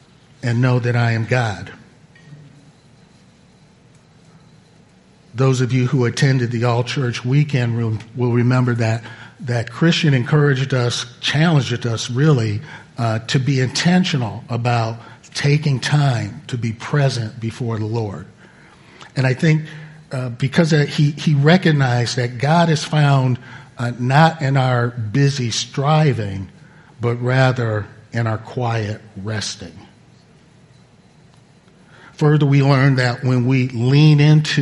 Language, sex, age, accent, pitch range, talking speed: English, male, 50-69, American, 115-145 Hz, 125 wpm